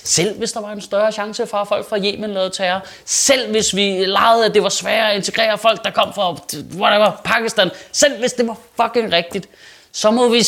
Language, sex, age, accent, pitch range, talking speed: Danish, male, 30-49, native, 180-255 Hz, 225 wpm